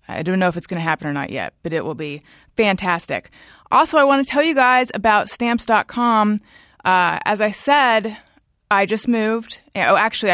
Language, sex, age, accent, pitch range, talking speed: English, female, 30-49, American, 190-230 Hz, 195 wpm